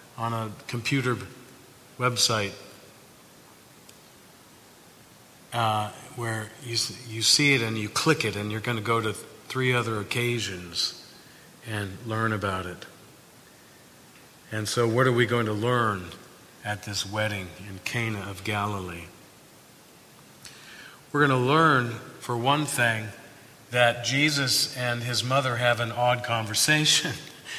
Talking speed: 125 wpm